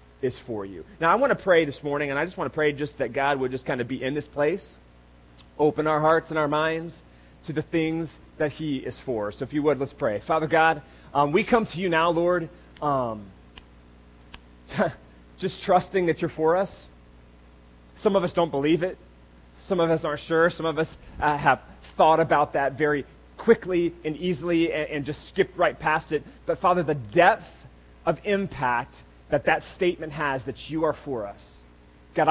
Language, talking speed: English, 200 wpm